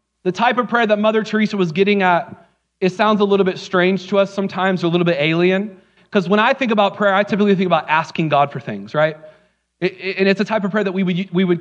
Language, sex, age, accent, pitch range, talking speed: English, male, 30-49, American, 170-200 Hz, 265 wpm